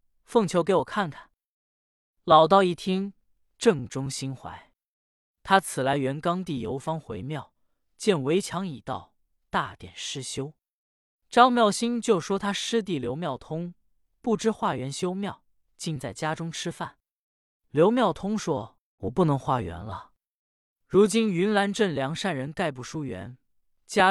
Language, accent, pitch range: Chinese, native, 135-200 Hz